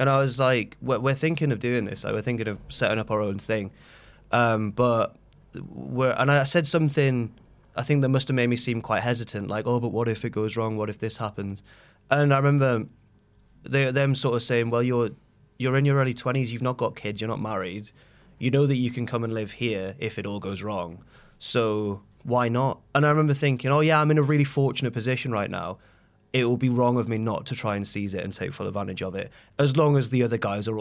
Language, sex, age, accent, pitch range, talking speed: English, male, 20-39, British, 105-135 Hz, 245 wpm